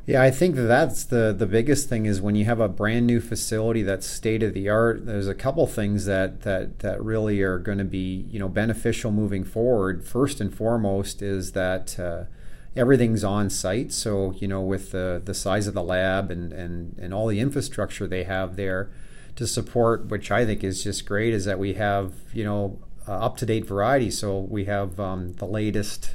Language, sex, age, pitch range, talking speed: English, male, 40-59, 95-110 Hz, 195 wpm